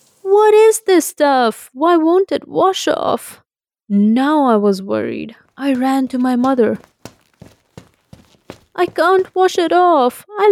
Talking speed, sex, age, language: 135 wpm, female, 20-39, English